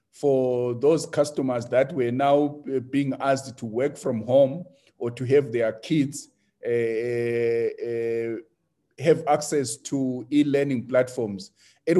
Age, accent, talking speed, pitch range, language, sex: 50-69, South African, 125 wpm, 120-155 Hz, English, male